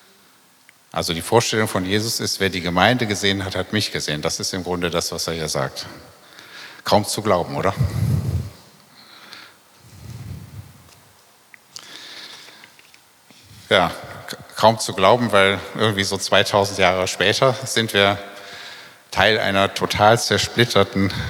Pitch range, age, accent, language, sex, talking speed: 95-115 Hz, 50-69, German, German, male, 120 wpm